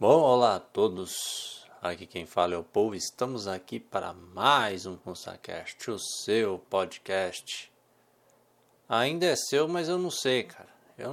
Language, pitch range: Portuguese, 95-130 Hz